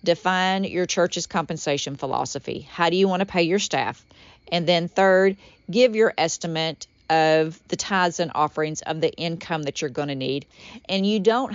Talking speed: 180 wpm